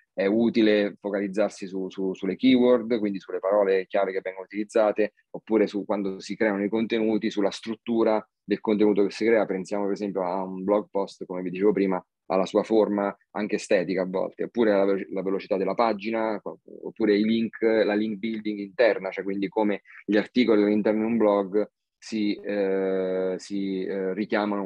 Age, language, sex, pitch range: 30-49, Italian, male, 95-110 Hz